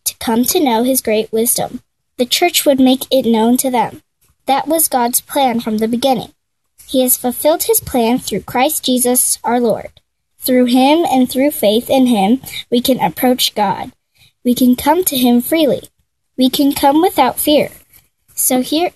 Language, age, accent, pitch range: Korean, 10-29, American, 230-270 Hz